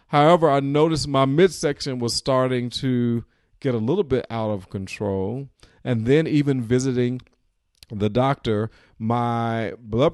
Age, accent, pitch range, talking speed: 40-59, American, 105-135 Hz, 135 wpm